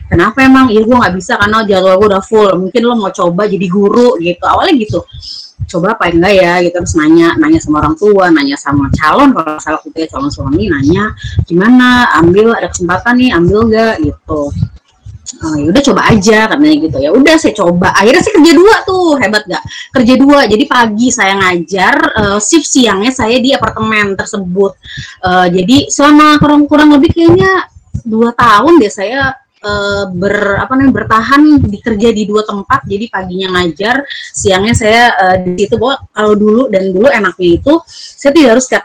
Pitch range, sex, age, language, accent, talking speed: 185-260 Hz, female, 20-39, Indonesian, native, 185 wpm